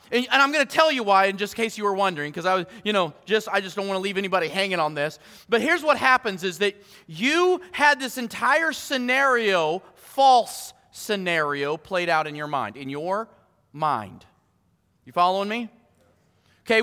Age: 30-49